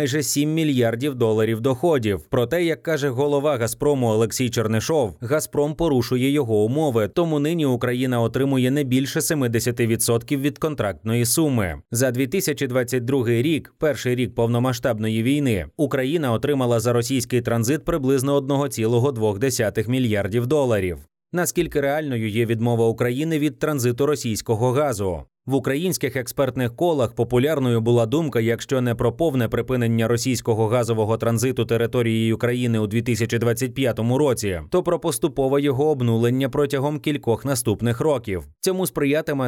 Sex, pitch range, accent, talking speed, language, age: male, 115-145 Hz, native, 125 wpm, Ukrainian, 30-49